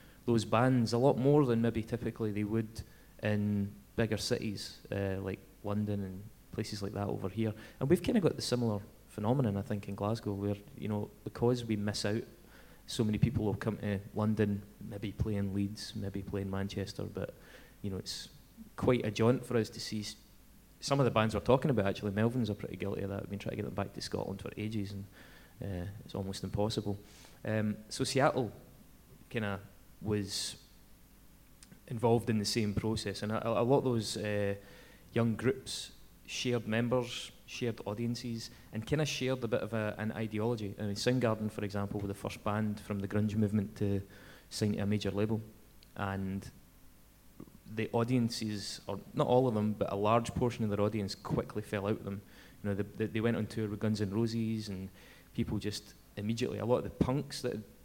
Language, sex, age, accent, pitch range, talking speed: English, male, 20-39, British, 100-115 Hz, 195 wpm